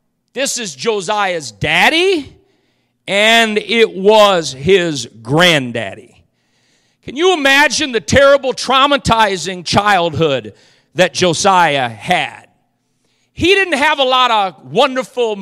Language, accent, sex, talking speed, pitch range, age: English, American, male, 100 wpm, 140-210 Hz, 50-69